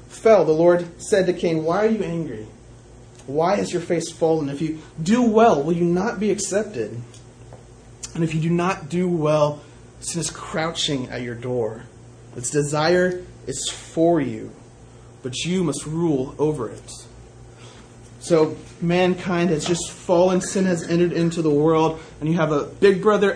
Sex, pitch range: male, 135-185 Hz